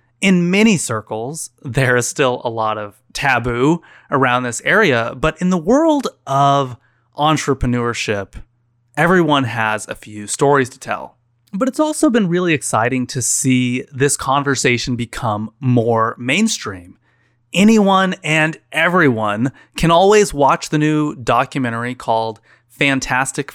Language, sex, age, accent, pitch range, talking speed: English, male, 30-49, American, 120-150 Hz, 125 wpm